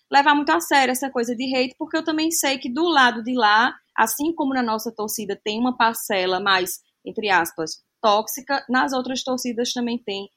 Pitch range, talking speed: 195-250 Hz, 195 wpm